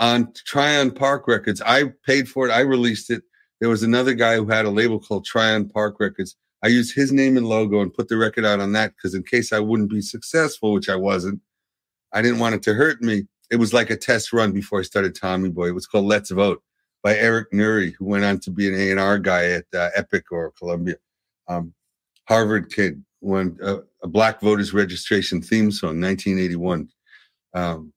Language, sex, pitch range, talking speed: English, male, 100-120 Hz, 210 wpm